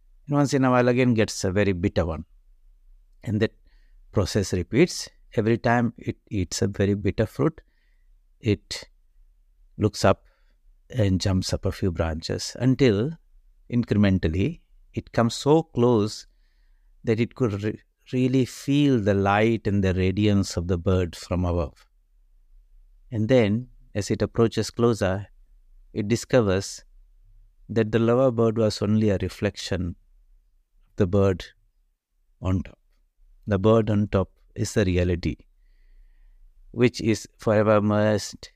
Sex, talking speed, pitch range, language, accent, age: male, 130 wpm, 95-110 Hz, English, Indian, 60-79